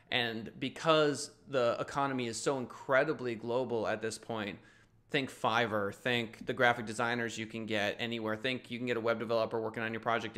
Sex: male